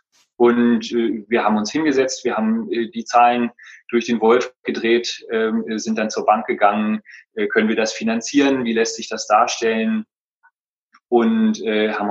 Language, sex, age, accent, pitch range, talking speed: German, male, 30-49, German, 105-135 Hz, 145 wpm